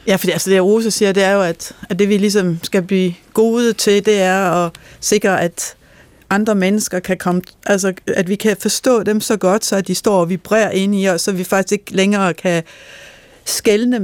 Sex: female